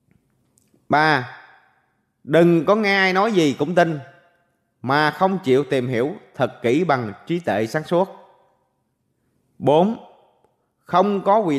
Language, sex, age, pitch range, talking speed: Vietnamese, male, 20-39, 130-175 Hz, 130 wpm